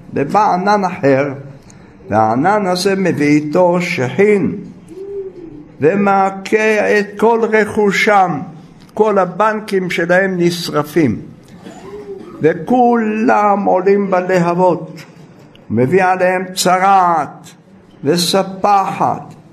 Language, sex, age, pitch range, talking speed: Hebrew, male, 60-79, 155-215 Hz, 70 wpm